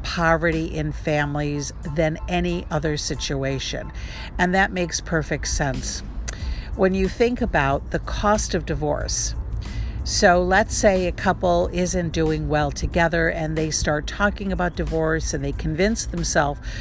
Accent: American